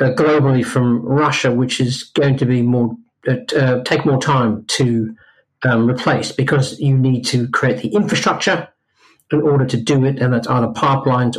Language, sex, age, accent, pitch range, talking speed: English, male, 50-69, British, 120-145 Hz, 170 wpm